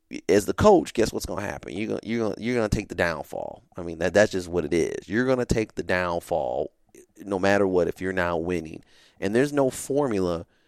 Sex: male